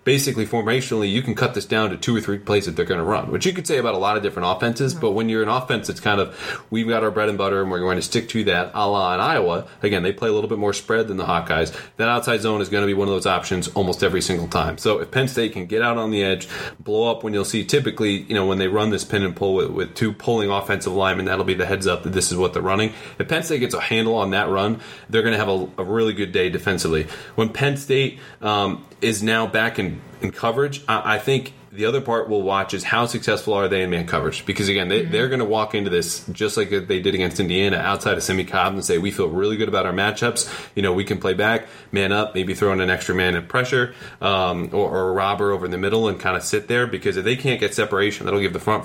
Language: English